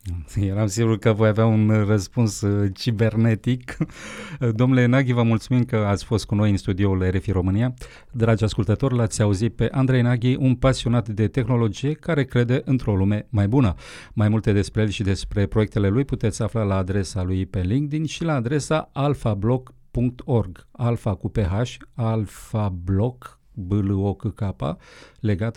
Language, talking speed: Romanian, 145 wpm